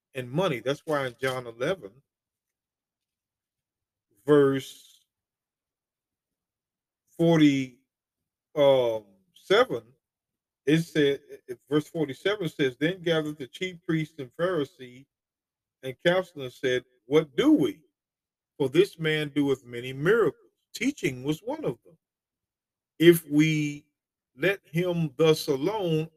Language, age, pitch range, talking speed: English, 40-59, 130-165 Hz, 100 wpm